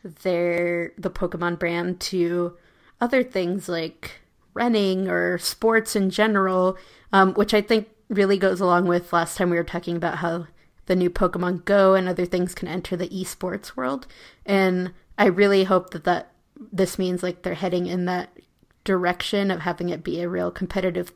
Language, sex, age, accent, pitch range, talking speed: English, female, 20-39, American, 175-195 Hz, 175 wpm